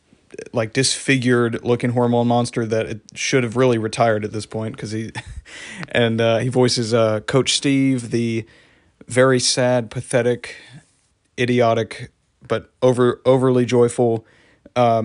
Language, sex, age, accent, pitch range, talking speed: English, male, 30-49, American, 115-130 Hz, 130 wpm